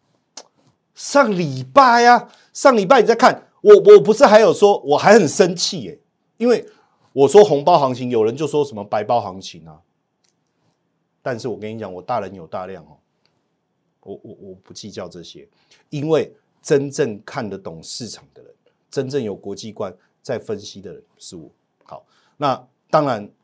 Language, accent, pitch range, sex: Chinese, native, 120-200 Hz, male